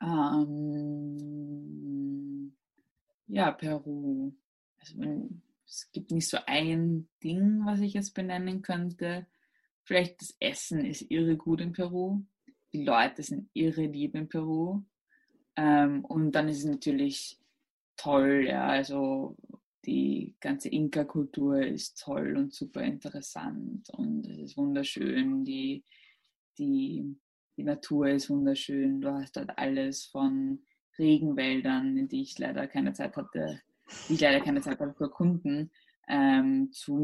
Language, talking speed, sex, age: English, 125 wpm, female, 20-39